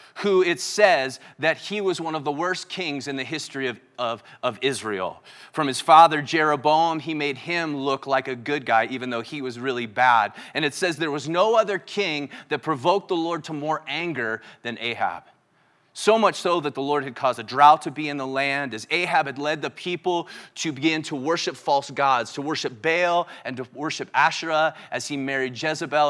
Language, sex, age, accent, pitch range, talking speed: English, male, 30-49, American, 135-165 Hz, 205 wpm